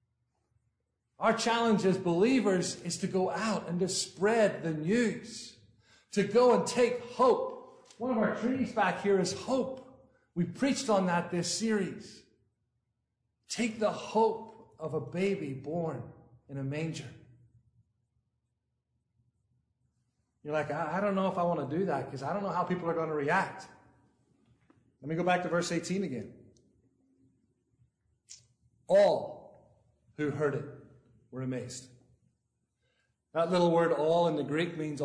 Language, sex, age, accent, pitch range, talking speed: English, male, 40-59, American, 120-180 Hz, 145 wpm